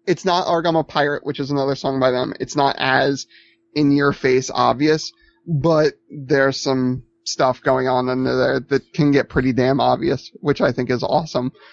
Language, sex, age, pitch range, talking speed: English, male, 30-49, 125-155 Hz, 185 wpm